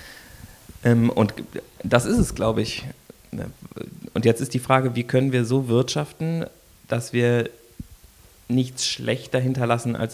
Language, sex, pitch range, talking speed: German, male, 110-135 Hz, 130 wpm